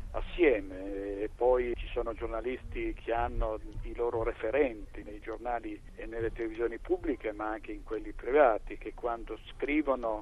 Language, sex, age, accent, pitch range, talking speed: Italian, male, 50-69, native, 105-125 Hz, 145 wpm